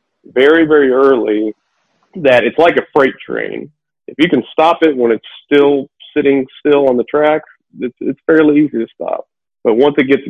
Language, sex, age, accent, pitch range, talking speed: English, male, 40-59, American, 115-130 Hz, 185 wpm